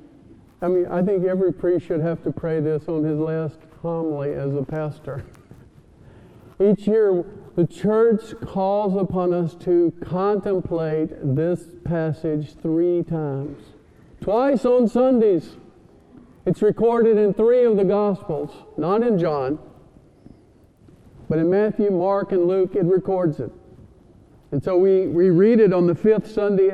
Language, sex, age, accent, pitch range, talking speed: English, male, 50-69, American, 160-210 Hz, 140 wpm